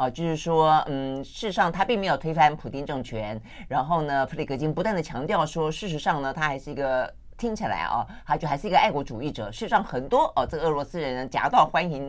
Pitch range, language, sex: 130-175 Hz, Chinese, female